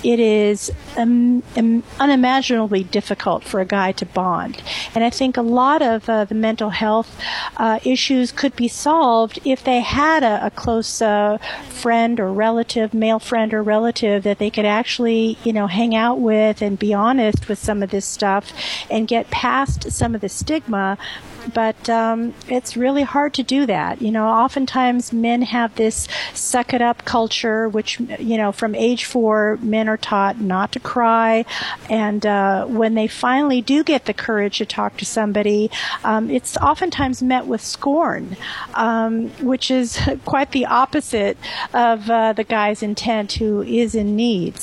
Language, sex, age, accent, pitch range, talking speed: English, female, 50-69, American, 215-245 Hz, 170 wpm